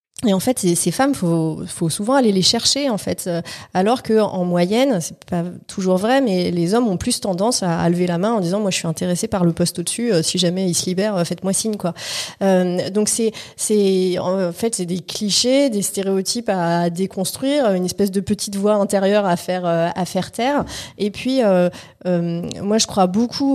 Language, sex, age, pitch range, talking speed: French, female, 30-49, 175-215 Hz, 210 wpm